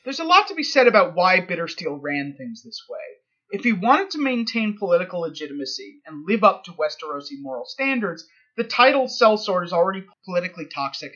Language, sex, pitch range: English, male, 170-245 Hz